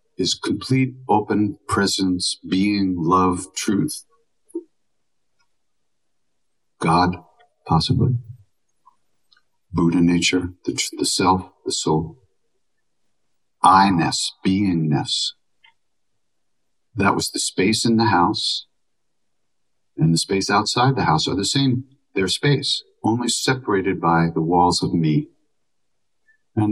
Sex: male